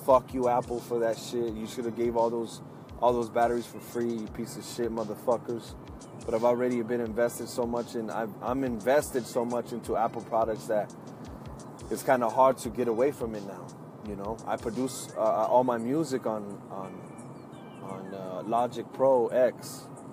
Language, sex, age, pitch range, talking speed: English, male, 20-39, 115-135 Hz, 190 wpm